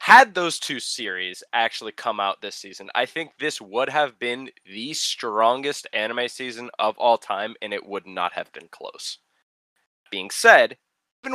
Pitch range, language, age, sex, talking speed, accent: 110-150 Hz, English, 20-39, male, 170 wpm, American